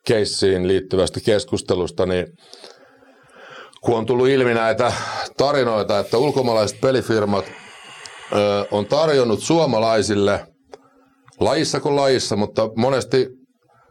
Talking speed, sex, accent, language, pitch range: 95 wpm, male, native, Finnish, 100-135 Hz